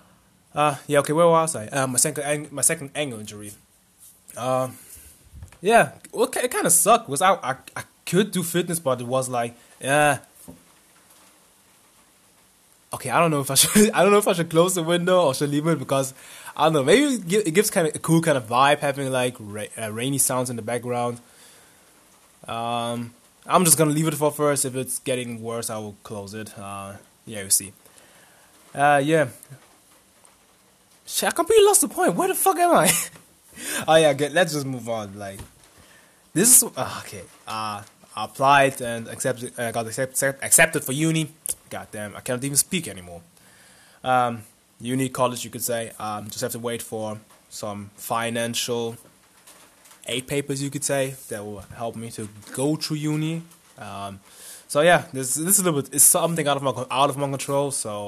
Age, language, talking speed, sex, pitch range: 20-39, English, 195 wpm, male, 115-150 Hz